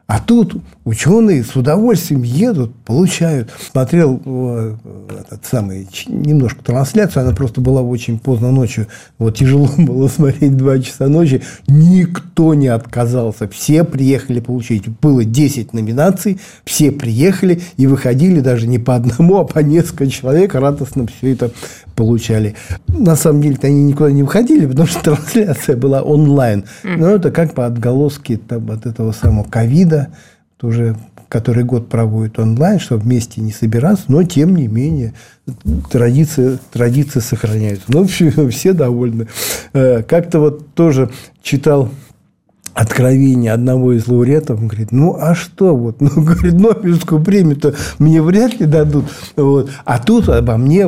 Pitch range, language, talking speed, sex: 115-155 Hz, Russian, 145 wpm, male